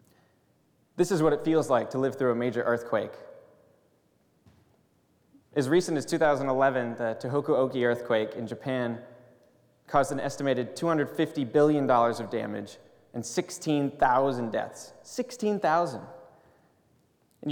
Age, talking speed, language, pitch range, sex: 20-39, 115 wpm, English, 120-155 Hz, male